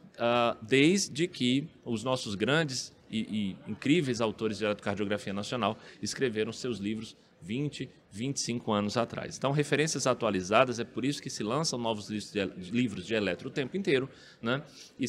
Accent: Brazilian